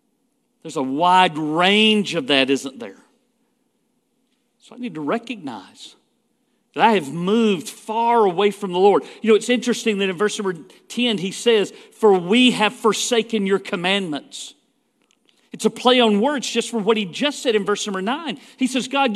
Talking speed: 180 wpm